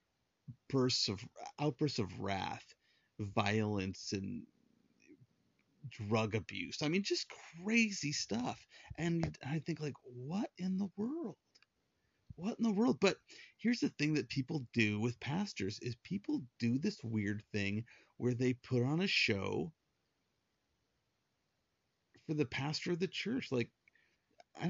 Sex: male